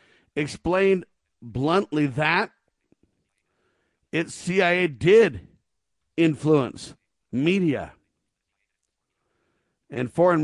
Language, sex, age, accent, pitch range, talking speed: English, male, 50-69, American, 135-170 Hz, 55 wpm